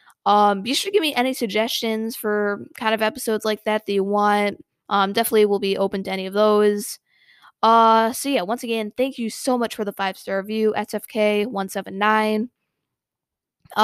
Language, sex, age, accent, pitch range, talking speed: English, female, 20-39, American, 210-250 Hz, 175 wpm